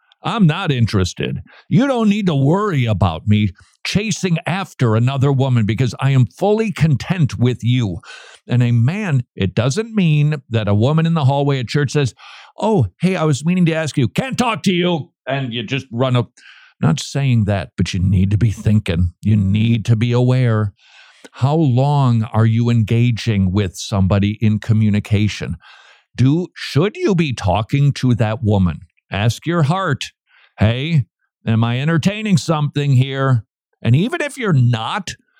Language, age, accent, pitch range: English, 50-69, American, 110-155 Hz